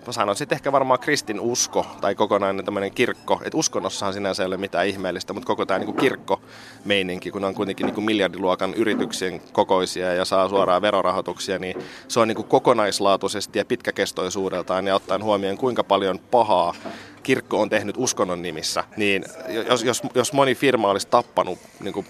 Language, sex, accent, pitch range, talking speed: Finnish, male, native, 95-115 Hz, 165 wpm